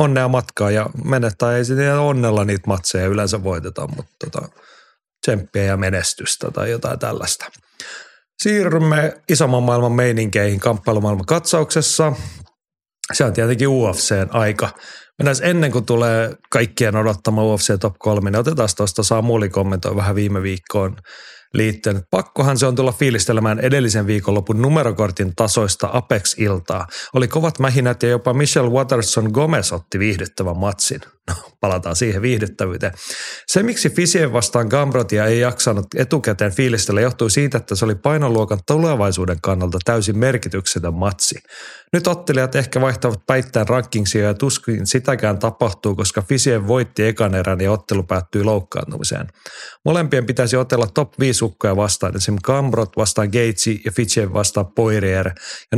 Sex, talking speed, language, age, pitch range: male, 135 wpm, Finnish, 30-49, 100-130 Hz